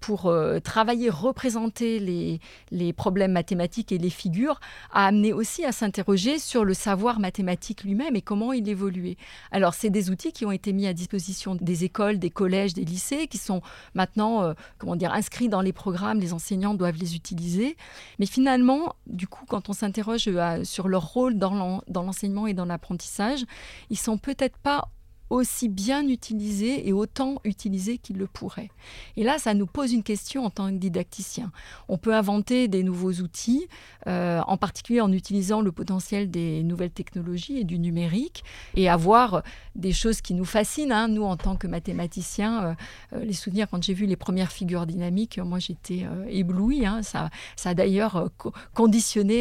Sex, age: female, 30-49